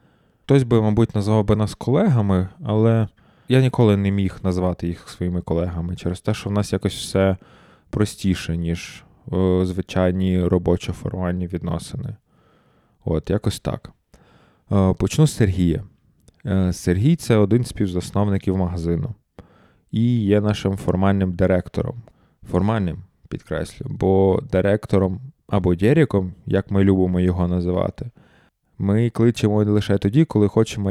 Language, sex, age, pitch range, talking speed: Ukrainian, male, 20-39, 90-105 Hz, 125 wpm